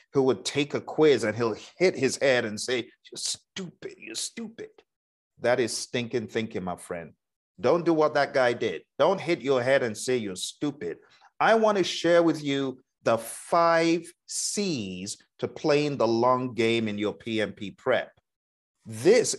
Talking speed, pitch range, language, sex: 170 wpm, 125-190 Hz, English, male